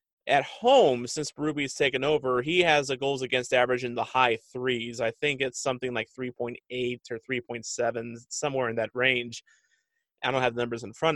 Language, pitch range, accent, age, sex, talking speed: English, 120-145 Hz, American, 30-49, male, 190 wpm